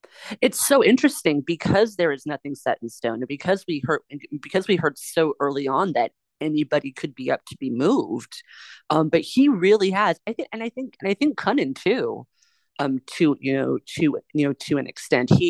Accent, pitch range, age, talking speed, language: American, 140-195 Hz, 30-49, 210 wpm, English